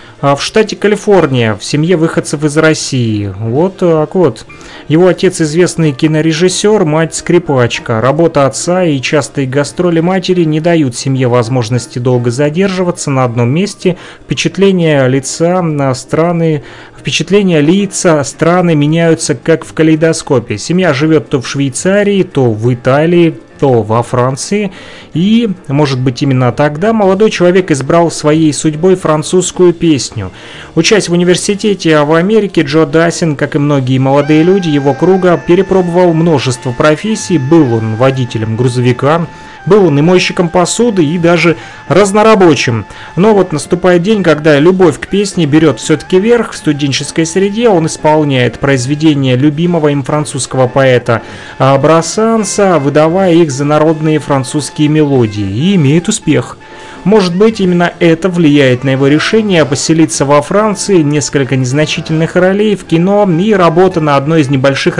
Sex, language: male, Russian